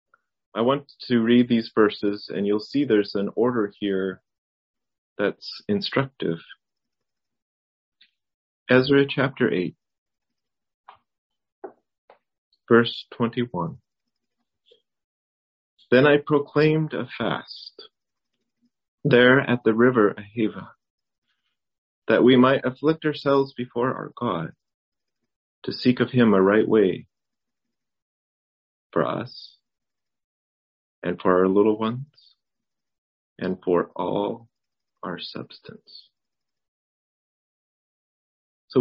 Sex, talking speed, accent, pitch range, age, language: male, 90 wpm, American, 100-130 Hz, 30-49, English